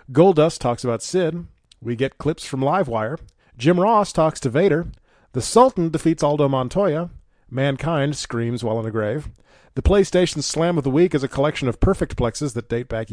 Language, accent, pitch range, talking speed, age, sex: English, American, 125-170 Hz, 185 wpm, 40-59, male